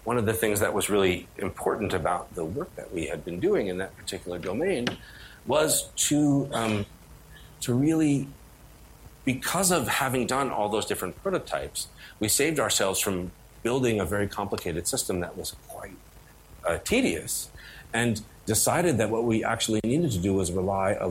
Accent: American